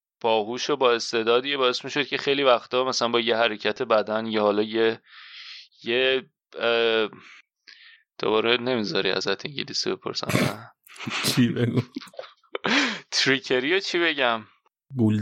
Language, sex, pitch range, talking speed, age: Persian, male, 115-135 Hz, 110 wpm, 30-49